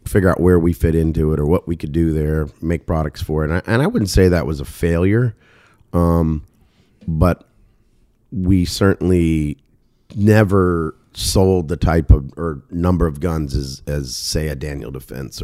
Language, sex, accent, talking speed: English, male, American, 180 wpm